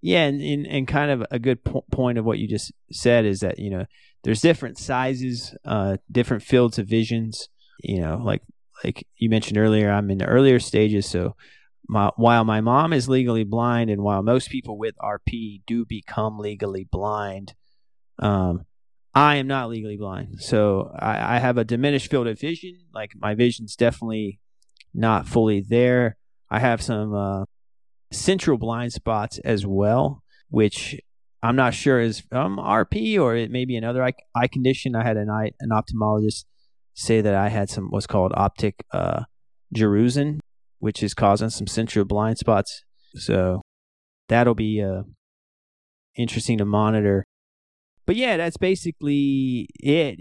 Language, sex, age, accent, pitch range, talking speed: English, male, 30-49, American, 105-125 Hz, 160 wpm